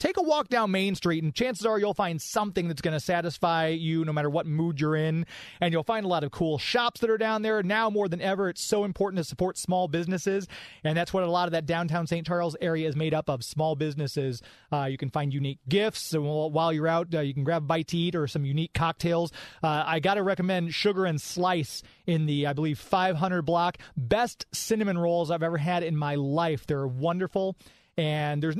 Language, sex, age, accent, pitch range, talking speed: English, male, 30-49, American, 155-195 Hz, 235 wpm